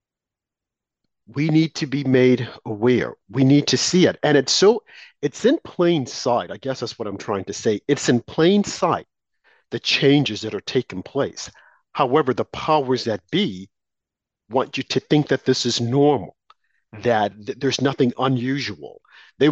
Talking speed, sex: 165 wpm, male